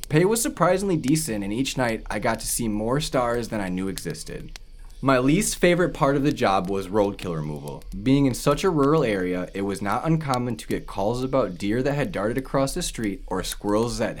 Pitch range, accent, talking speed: 90-135 Hz, American, 215 wpm